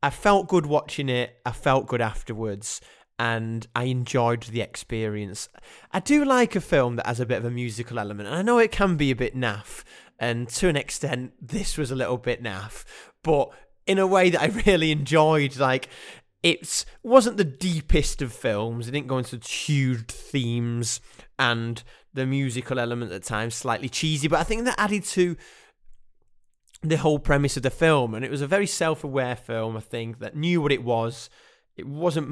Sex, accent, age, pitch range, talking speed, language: male, British, 20-39, 120-150 Hz, 190 wpm, English